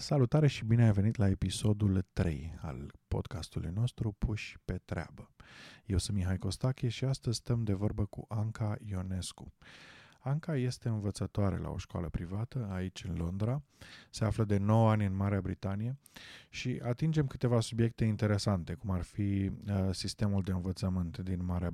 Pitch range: 95-110 Hz